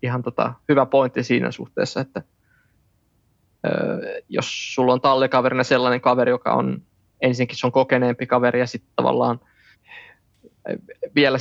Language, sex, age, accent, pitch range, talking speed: Finnish, male, 20-39, native, 120-130 Hz, 125 wpm